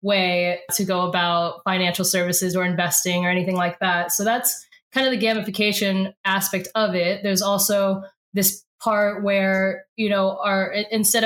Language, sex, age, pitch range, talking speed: English, female, 10-29, 175-200 Hz, 160 wpm